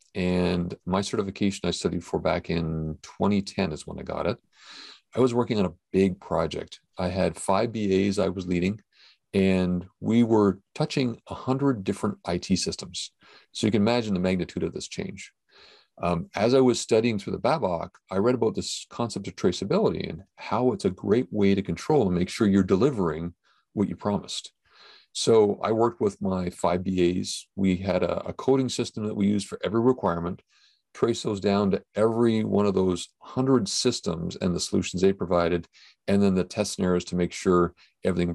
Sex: male